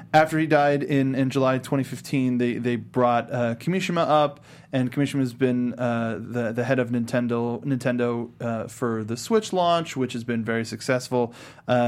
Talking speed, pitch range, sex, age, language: 180 wpm, 120-150 Hz, male, 20-39, English